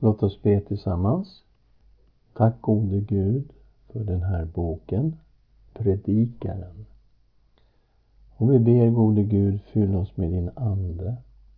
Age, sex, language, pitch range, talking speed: 50-69, male, Swedish, 95-115 Hz, 115 wpm